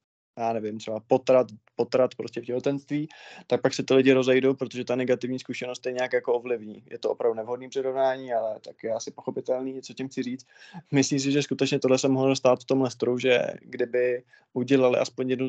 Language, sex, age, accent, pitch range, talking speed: Czech, male, 20-39, native, 115-130 Hz, 200 wpm